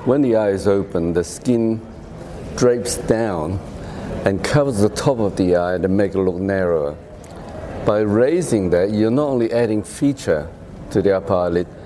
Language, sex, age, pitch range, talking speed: English, male, 60-79, 90-110 Hz, 165 wpm